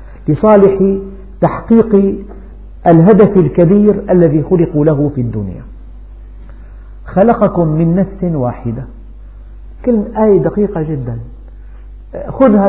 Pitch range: 130-190 Hz